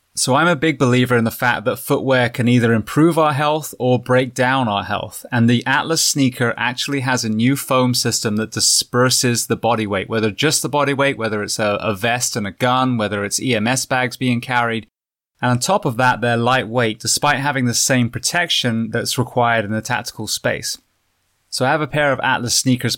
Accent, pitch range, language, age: British, 115-135 Hz, English, 20-39